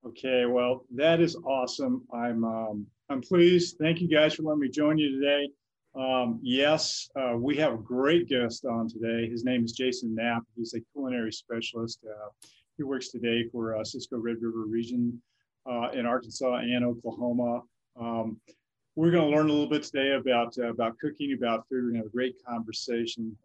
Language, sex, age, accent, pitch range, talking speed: English, male, 40-59, American, 115-135 Hz, 185 wpm